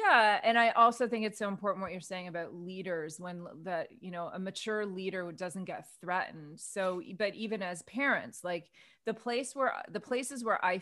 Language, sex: English, female